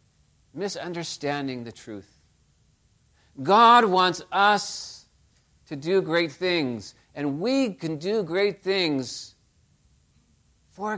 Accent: American